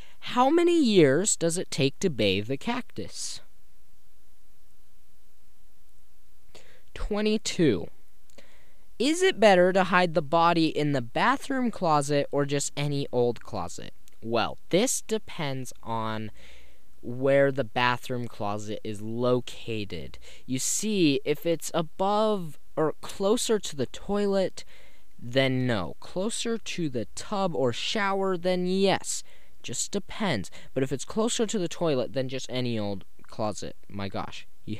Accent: American